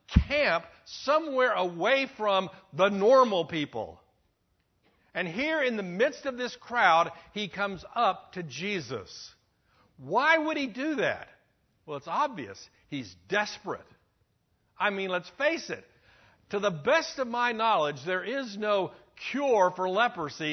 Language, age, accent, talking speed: English, 60-79, American, 135 wpm